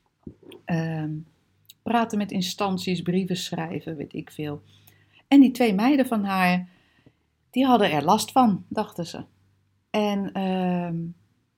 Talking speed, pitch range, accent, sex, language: 125 wpm, 150-190 Hz, Dutch, female, Dutch